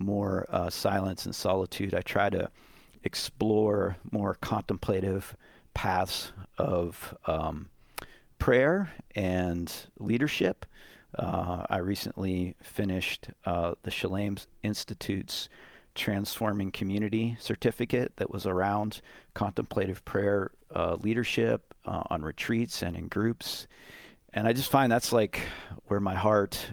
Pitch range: 95-120 Hz